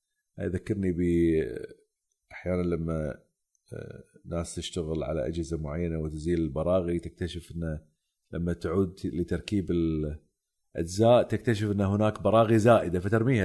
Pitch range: 85-130 Hz